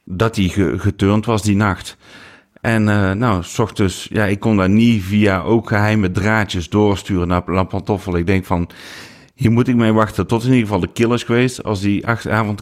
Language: Dutch